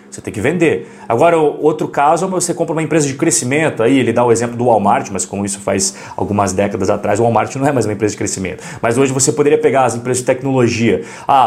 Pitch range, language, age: 120-165 Hz, Portuguese, 30-49